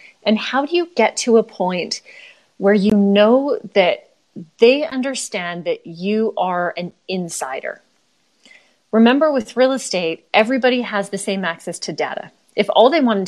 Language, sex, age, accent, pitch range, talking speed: English, female, 30-49, American, 175-220 Hz, 155 wpm